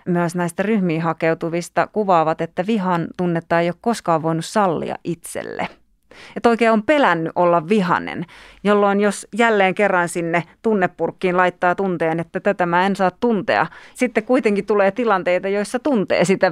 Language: Finnish